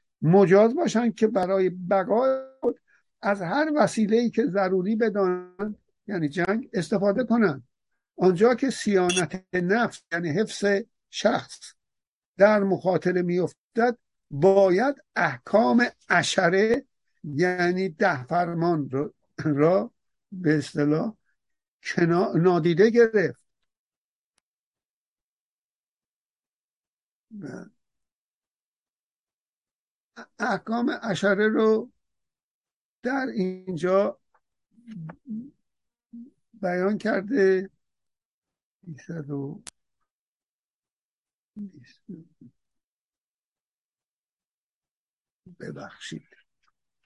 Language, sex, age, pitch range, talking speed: Persian, male, 60-79, 175-225 Hz, 60 wpm